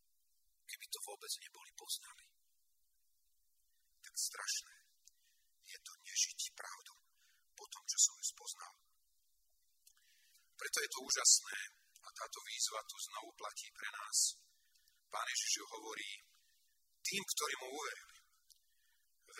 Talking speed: 120 wpm